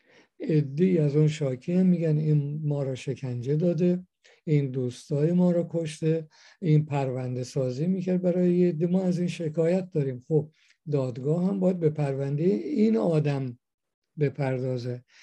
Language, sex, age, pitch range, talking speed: Persian, male, 50-69, 140-165 Hz, 140 wpm